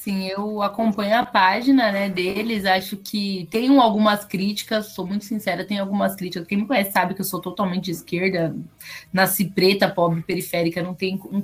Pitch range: 190-230 Hz